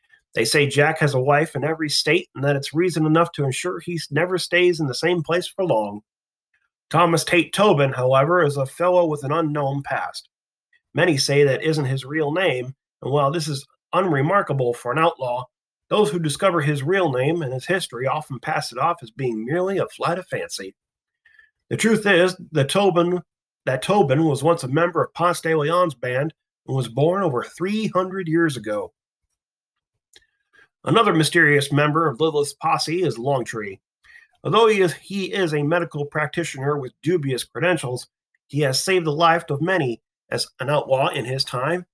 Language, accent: English, American